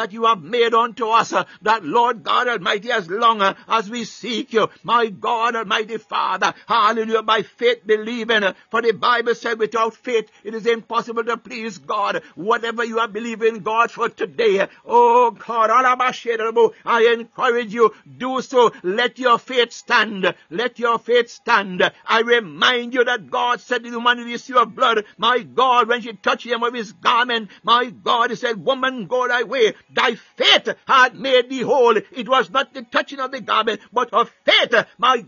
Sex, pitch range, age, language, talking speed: male, 230-260 Hz, 60-79, English, 185 wpm